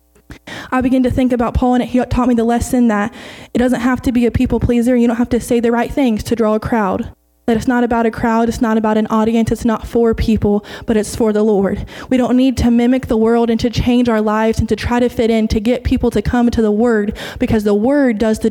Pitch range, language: 215-250 Hz, English